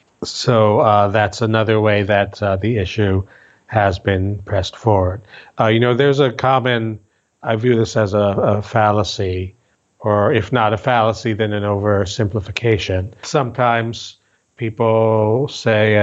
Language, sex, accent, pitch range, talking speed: English, male, American, 100-115 Hz, 140 wpm